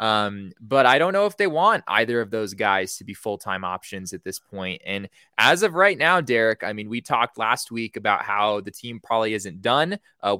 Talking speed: 225 wpm